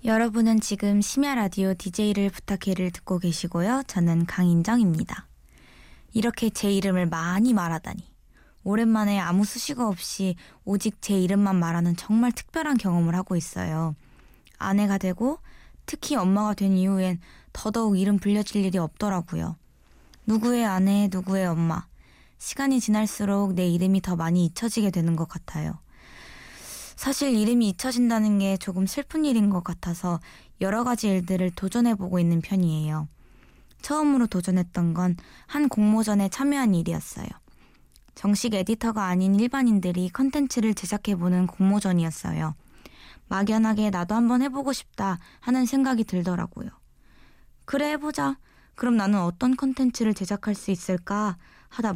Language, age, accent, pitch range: Korean, 20-39, native, 180-225 Hz